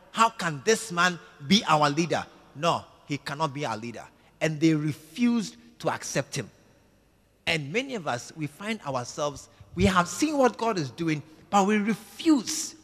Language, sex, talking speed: English, male, 170 wpm